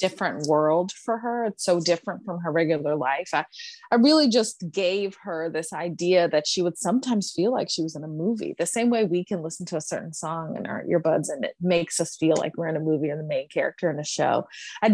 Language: English